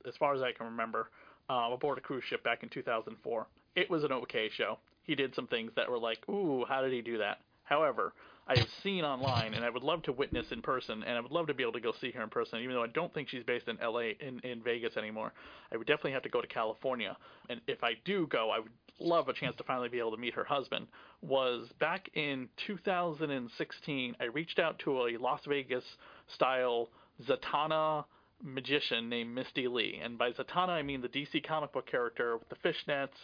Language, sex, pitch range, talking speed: English, male, 125-155 Hz, 230 wpm